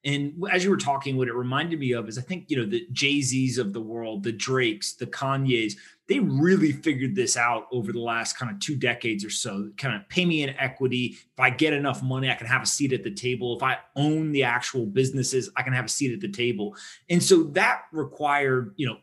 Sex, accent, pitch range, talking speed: male, American, 125-160 Hz, 245 wpm